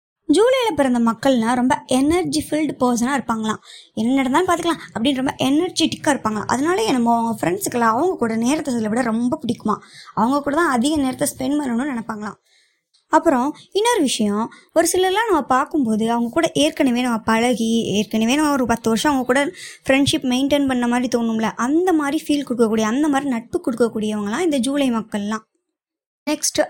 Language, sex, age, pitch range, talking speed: Tamil, male, 20-39, 225-295 Hz, 155 wpm